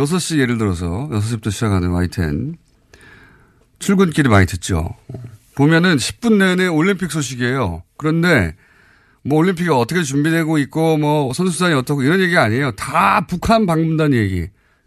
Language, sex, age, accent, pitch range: Korean, male, 30-49, native, 125-200 Hz